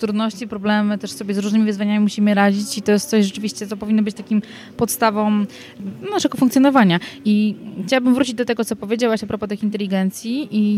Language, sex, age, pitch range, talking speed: Polish, female, 20-39, 200-225 Hz, 185 wpm